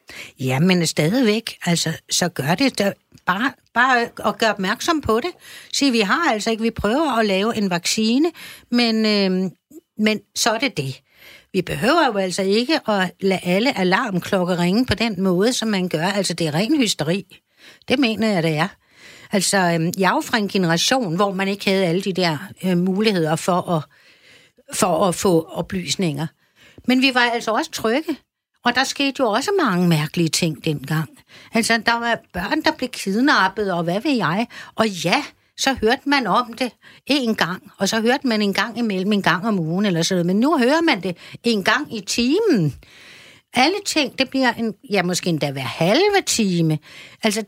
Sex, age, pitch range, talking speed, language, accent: female, 60-79, 180-250 Hz, 190 wpm, Danish, native